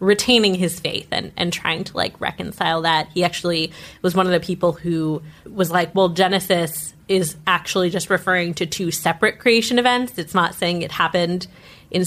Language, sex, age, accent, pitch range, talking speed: English, female, 20-39, American, 170-195 Hz, 185 wpm